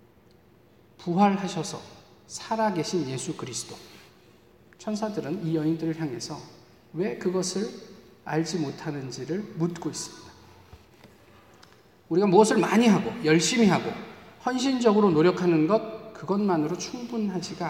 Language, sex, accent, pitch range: Korean, male, native, 160-225 Hz